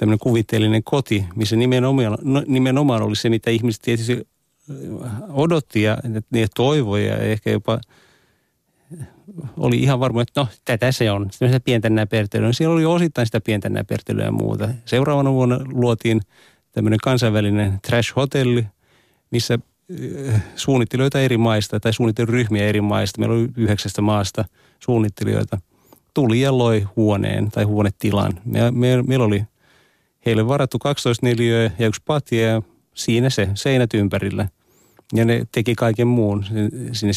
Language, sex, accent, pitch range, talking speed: Finnish, male, native, 110-125 Hz, 135 wpm